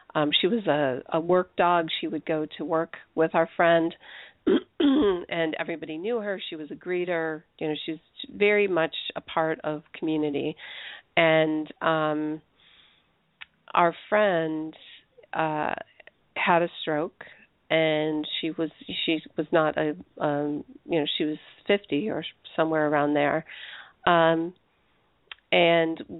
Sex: female